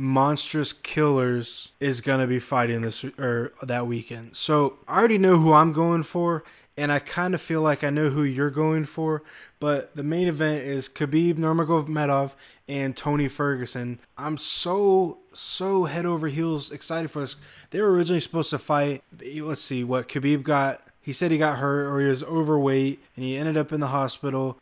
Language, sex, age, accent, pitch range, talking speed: English, male, 20-39, American, 140-180 Hz, 190 wpm